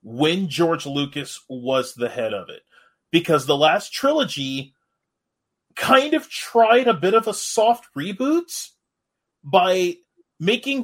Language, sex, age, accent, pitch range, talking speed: English, male, 30-49, American, 140-215 Hz, 125 wpm